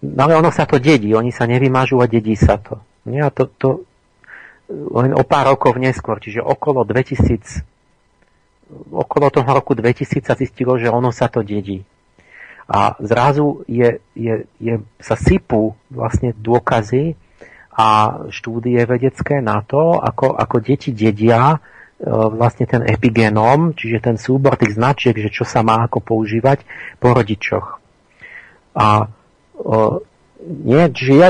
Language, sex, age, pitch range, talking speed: Slovak, male, 40-59, 110-135 Hz, 135 wpm